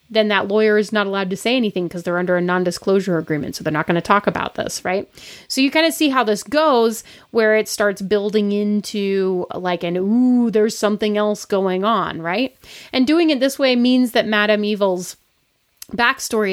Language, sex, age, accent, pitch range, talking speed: English, female, 30-49, American, 200-255 Hz, 205 wpm